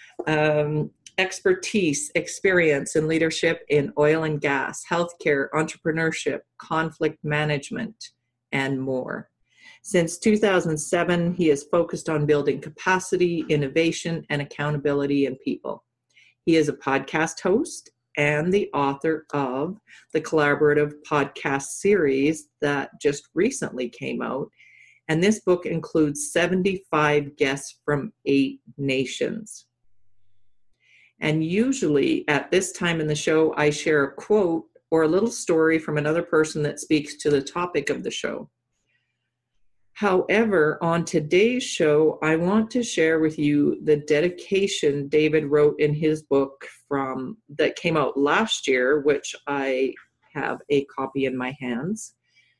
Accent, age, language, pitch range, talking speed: American, 40-59, English, 140-175 Hz, 130 wpm